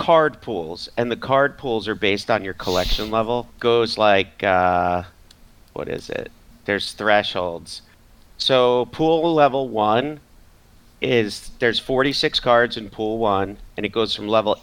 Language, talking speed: English, 150 wpm